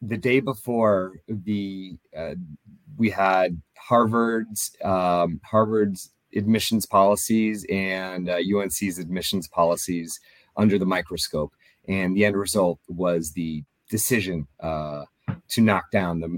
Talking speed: 115 wpm